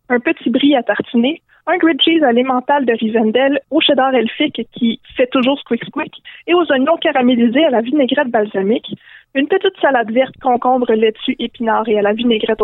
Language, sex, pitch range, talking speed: French, female, 235-295 Hz, 175 wpm